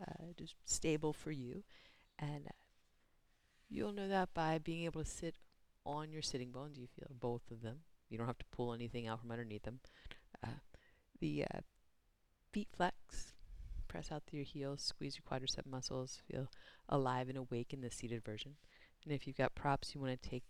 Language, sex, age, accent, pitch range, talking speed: English, female, 30-49, American, 110-145 Hz, 185 wpm